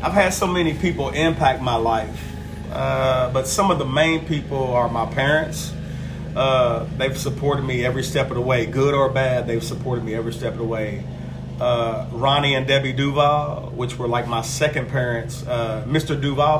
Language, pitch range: English, 120-150 Hz